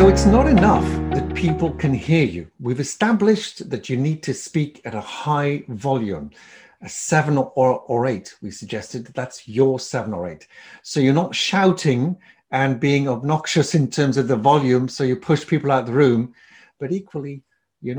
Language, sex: English, male